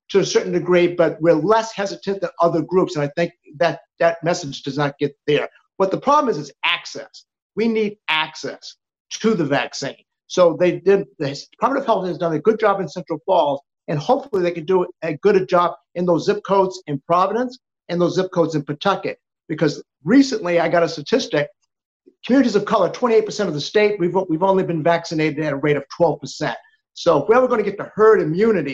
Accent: American